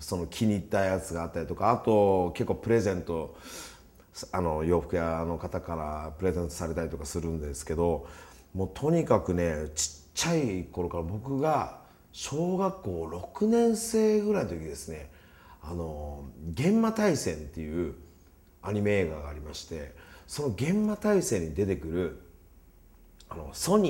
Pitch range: 85-130 Hz